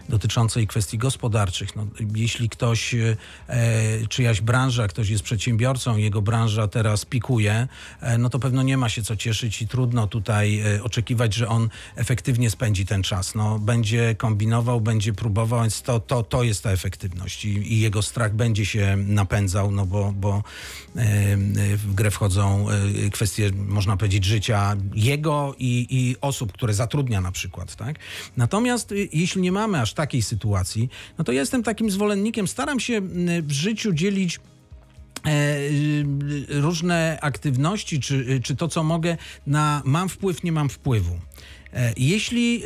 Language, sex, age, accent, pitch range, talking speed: Polish, male, 40-59, native, 110-150 Hz, 150 wpm